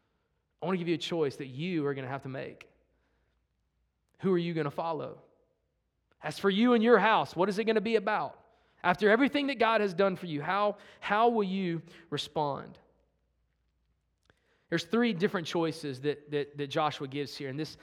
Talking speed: 200 wpm